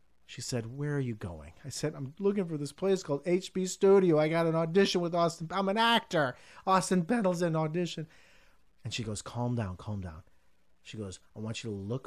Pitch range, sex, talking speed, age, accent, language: 90-130 Hz, male, 215 wpm, 40-59, American, English